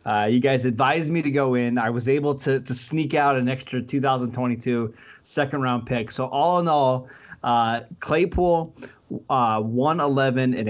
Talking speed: 170 wpm